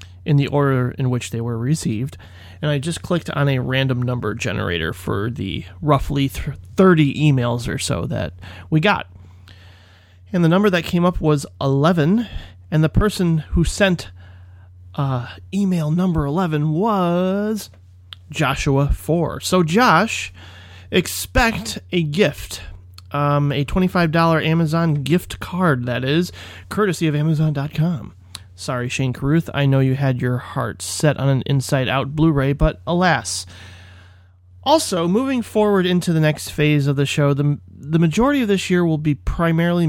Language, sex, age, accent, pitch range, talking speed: English, male, 30-49, American, 105-165 Hz, 150 wpm